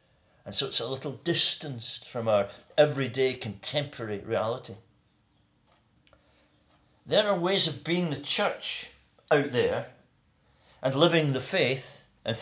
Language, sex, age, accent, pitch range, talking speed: English, male, 40-59, British, 125-180 Hz, 120 wpm